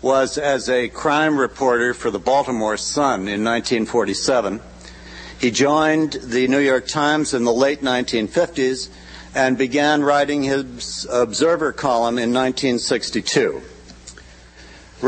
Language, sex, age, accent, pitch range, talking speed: English, male, 60-79, American, 125-155 Hz, 115 wpm